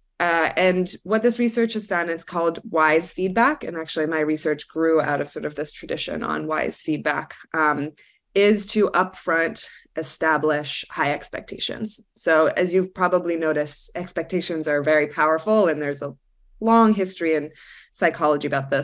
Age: 20-39